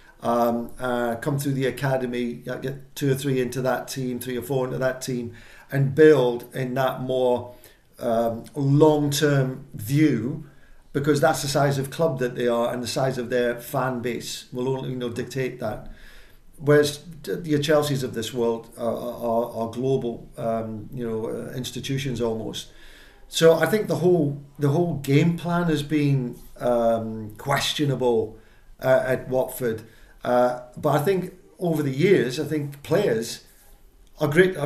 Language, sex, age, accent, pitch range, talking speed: English, male, 50-69, British, 120-145 Hz, 165 wpm